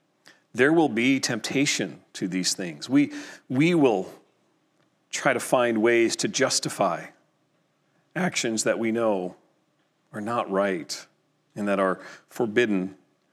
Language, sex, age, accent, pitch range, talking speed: English, male, 40-59, American, 115-150 Hz, 120 wpm